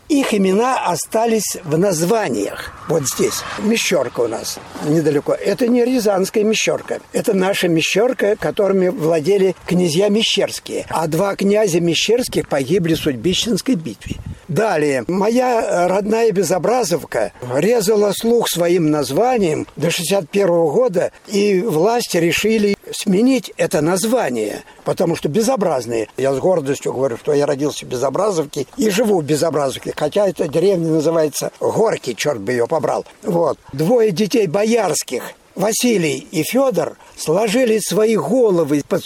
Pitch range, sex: 160-225 Hz, male